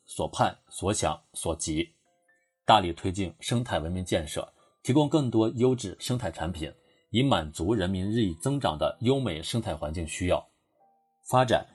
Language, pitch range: Chinese, 90-135 Hz